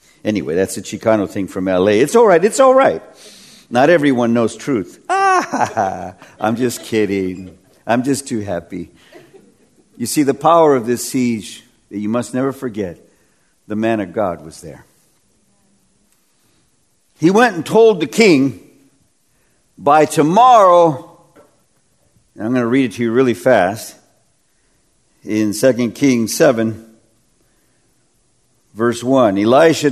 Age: 50-69